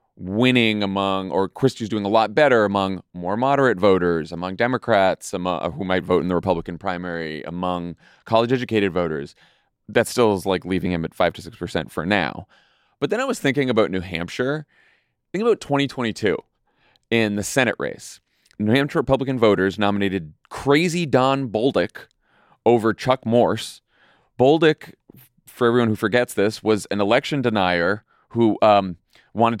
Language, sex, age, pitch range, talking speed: English, male, 30-49, 100-135 Hz, 155 wpm